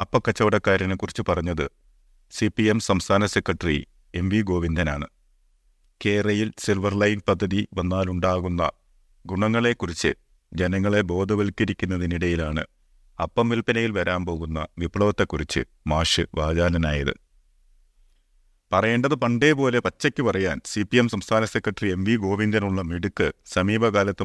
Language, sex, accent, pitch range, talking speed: Malayalam, male, native, 85-105 Hz, 95 wpm